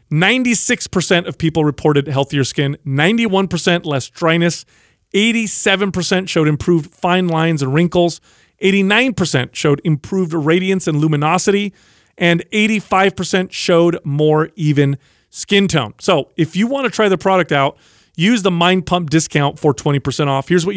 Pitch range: 155-195 Hz